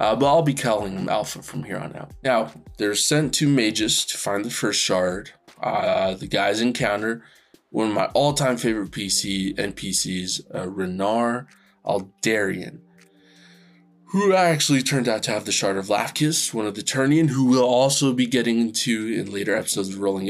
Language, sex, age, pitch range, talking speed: English, male, 20-39, 95-130 Hz, 175 wpm